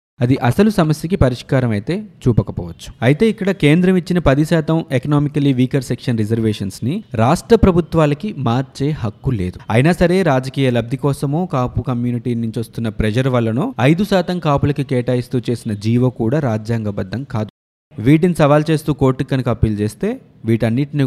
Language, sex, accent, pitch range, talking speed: Telugu, male, native, 115-155 Hz, 135 wpm